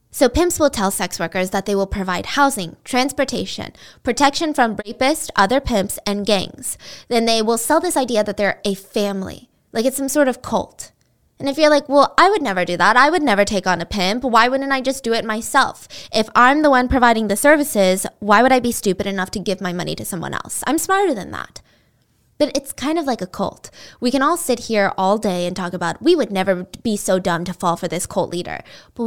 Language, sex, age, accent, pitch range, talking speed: English, female, 20-39, American, 195-265 Hz, 235 wpm